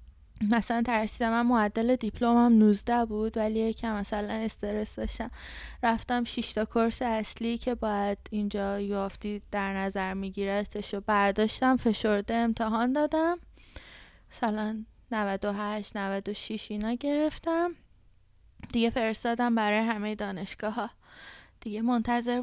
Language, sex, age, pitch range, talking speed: English, female, 20-39, 210-245 Hz, 110 wpm